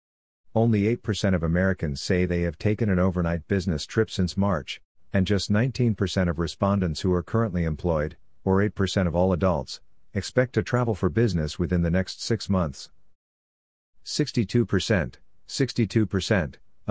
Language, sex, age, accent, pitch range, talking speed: English, male, 50-69, American, 90-105 Hz, 140 wpm